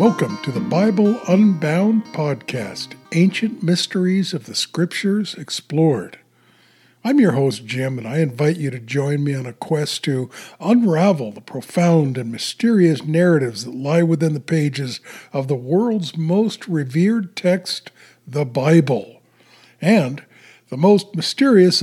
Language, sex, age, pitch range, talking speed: English, male, 60-79, 145-185 Hz, 135 wpm